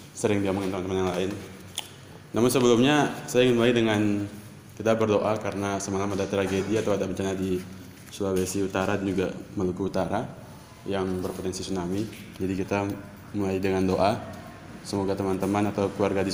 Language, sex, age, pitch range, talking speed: Indonesian, male, 20-39, 95-120 Hz, 150 wpm